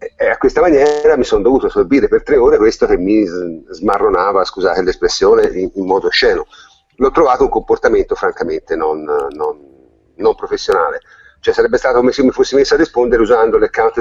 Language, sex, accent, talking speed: Italian, male, native, 180 wpm